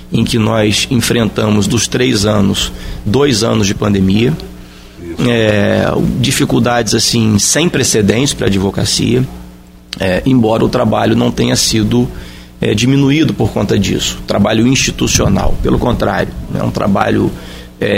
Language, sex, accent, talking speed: Portuguese, male, Brazilian, 135 wpm